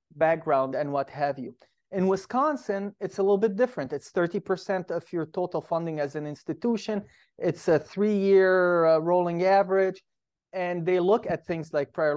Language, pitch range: English, 155-195 Hz